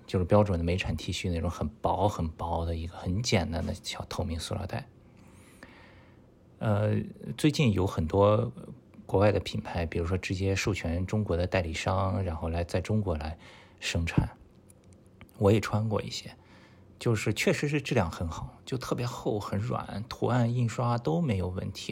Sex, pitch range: male, 90-110 Hz